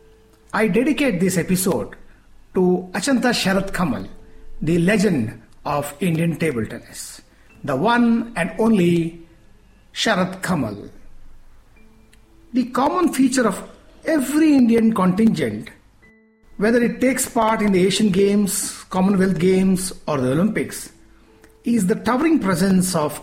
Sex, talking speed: male, 115 wpm